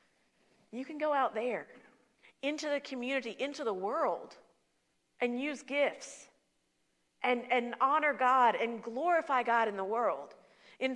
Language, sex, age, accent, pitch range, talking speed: English, female, 40-59, American, 195-260 Hz, 135 wpm